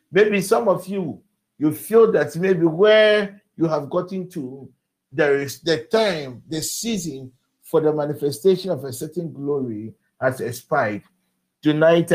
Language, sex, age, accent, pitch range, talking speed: English, male, 50-69, Nigerian, 140-180 Hz, 145 wpm